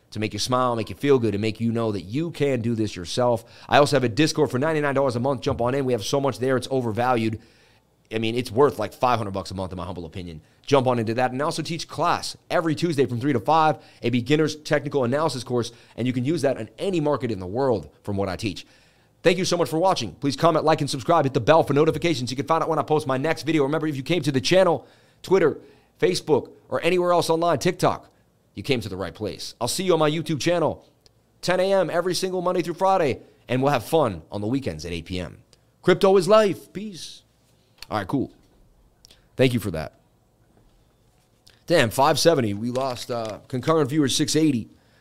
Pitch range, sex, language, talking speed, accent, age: 120-155 Hz, male, English, 230 wpm, American, 30-49